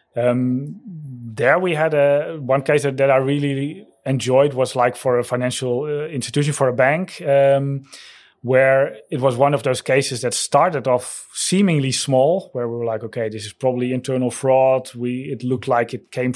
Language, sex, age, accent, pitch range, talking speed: English, male, 30-49, Dutch, 120-140 Hz, 185 wpm